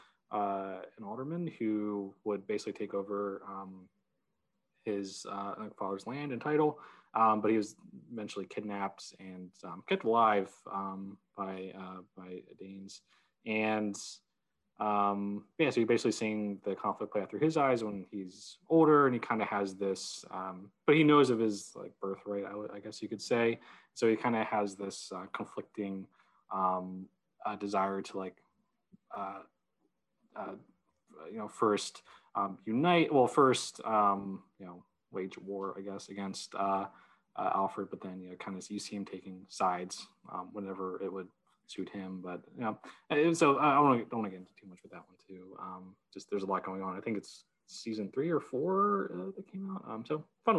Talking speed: 185 wpm